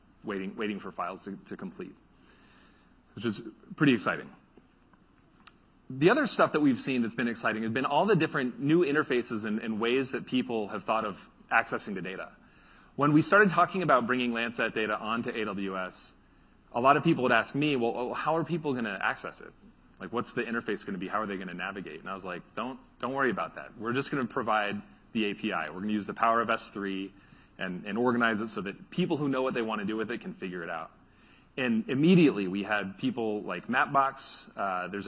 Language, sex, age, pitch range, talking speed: English, male, 30-49, 110-140 Hz, 220 wpm